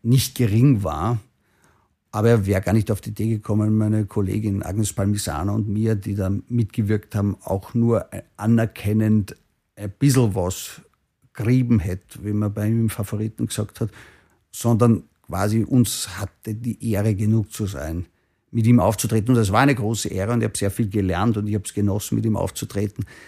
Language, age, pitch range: German, 50-69, 100-115 Hz